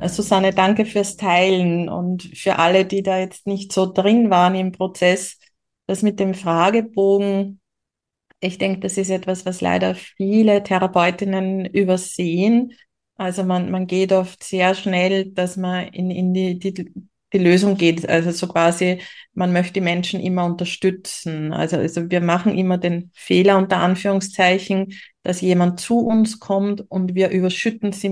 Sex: female